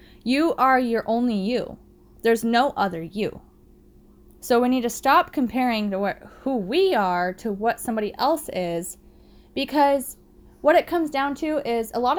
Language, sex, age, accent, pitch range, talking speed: English, female, 10-29, American, 200-255 Hz, 160 wpm